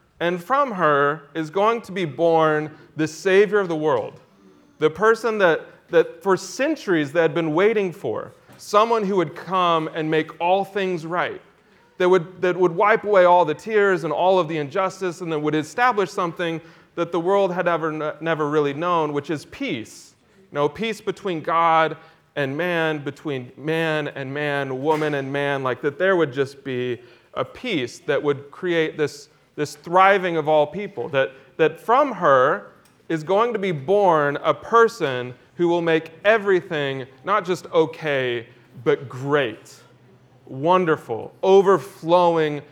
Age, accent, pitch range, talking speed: 30-49, American, 140-180 Hz, 165 wpm